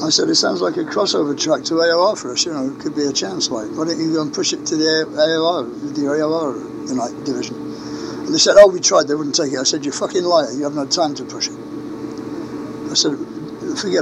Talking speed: 240 wpm